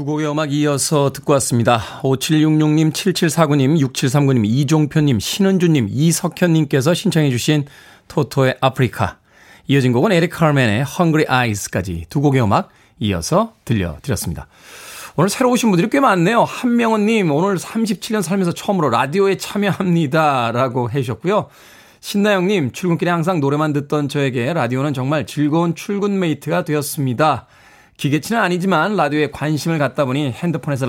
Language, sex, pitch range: Korean, male, 135-185 Hz